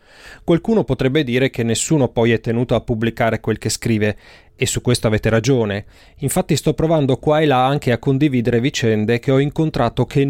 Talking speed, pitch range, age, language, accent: 185 wpm, 110-145 Hz, 30-49, Italian, native